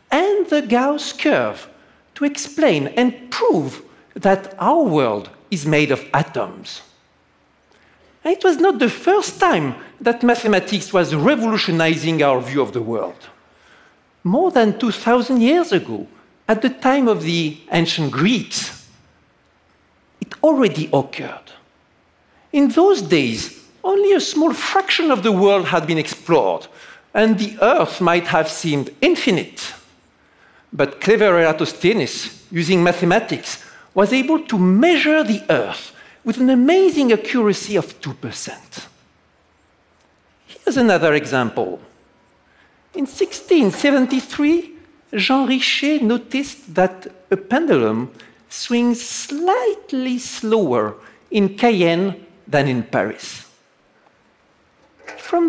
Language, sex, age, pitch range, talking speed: English, male, 50-69, 180-300 Hz, 110 wpm